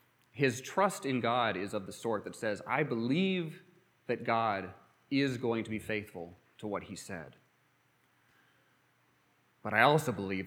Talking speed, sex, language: 155 wpm, male, English